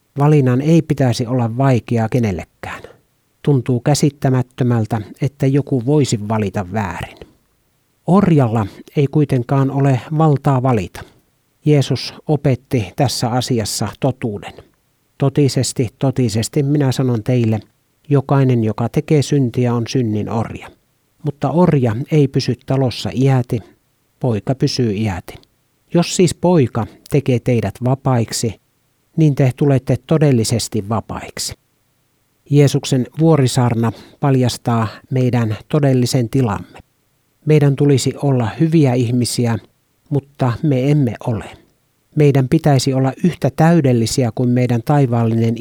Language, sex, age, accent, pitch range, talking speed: Finnish, male, 60-79, native, 115-140 Hz, 105 wpm